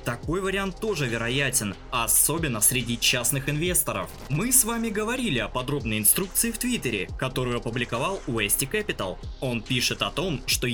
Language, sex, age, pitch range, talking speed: Russian, male, 20-39, 110-145 Hz, 145 wpm